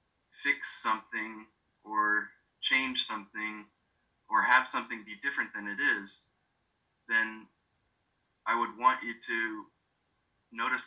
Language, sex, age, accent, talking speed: English, male, 30-49, American, 110 wpm